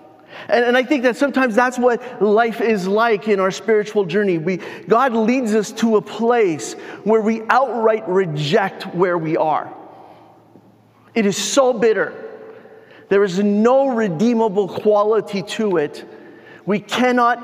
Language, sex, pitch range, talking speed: English, male, 180-230 Hz, 140 wpm